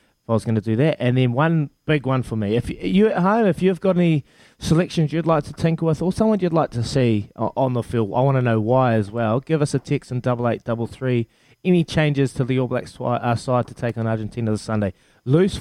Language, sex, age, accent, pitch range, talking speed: English, male, 20-39, Australian, 110-140 Hz, 260 wpm